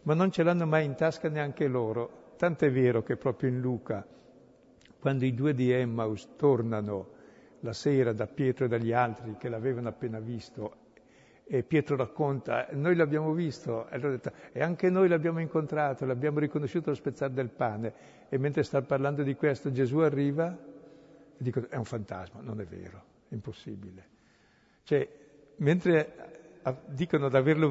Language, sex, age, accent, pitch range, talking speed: Italian, male, 60-79, native, 120-155 Hz, 160 wpm